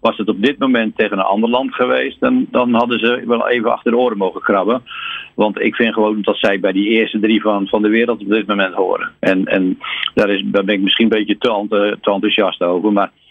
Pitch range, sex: 105-115 Hz, male